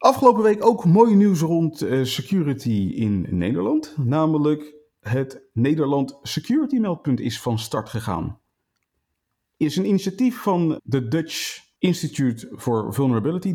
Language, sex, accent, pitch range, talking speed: Dutch, male, Dutch, 120-175 Hz, 120 wpm